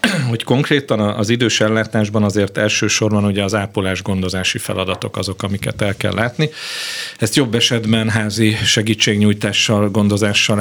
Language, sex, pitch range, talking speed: Hungarian, male, 95-115 Hz, 125 wpm